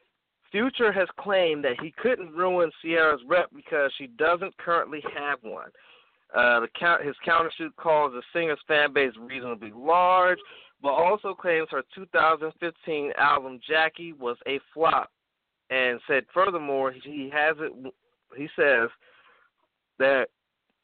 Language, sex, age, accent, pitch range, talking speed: English, male, 40-59, American, 115-160 Hz, 130 wpm